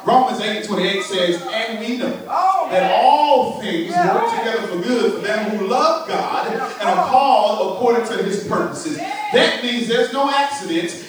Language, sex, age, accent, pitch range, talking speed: English, male, 30-49, American, 230-375 Hz, 170 wpm